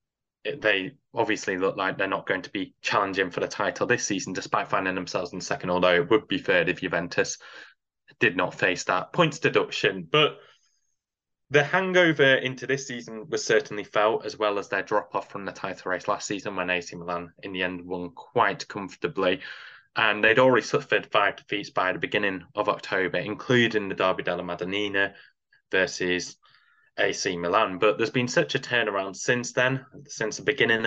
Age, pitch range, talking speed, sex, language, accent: 20-39, 95-125 Hz, 180 wpm, male, English, British